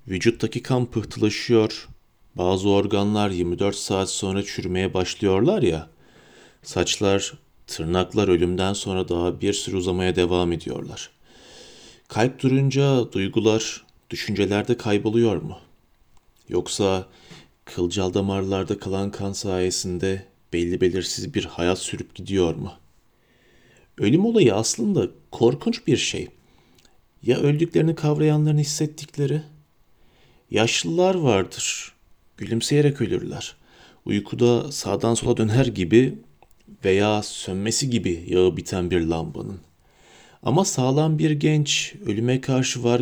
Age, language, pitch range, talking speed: 40-59, Turkish, 95-130 Hz, 100 wpm